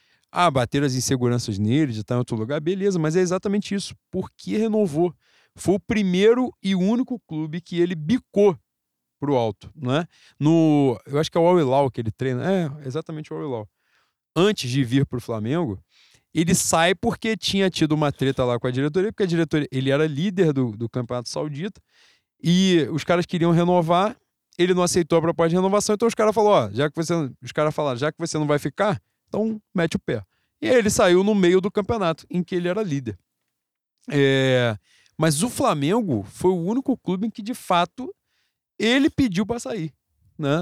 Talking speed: 195 wpm